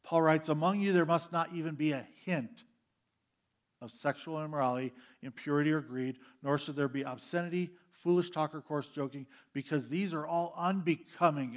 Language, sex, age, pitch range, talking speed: English, male, 50-69, 125-170 Hz, 165 wpm